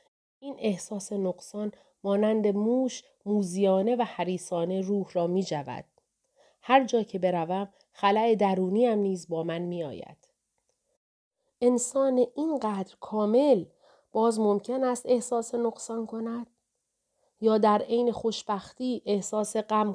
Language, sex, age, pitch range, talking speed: Persian, female, 40-59, 180-220 Hz, 115 wpm